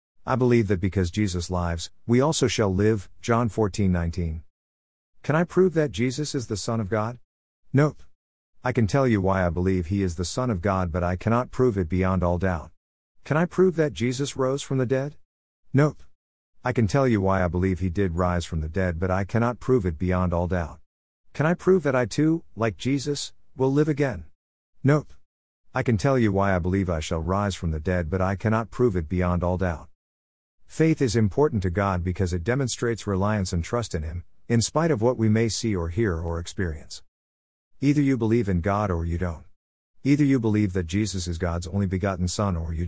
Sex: male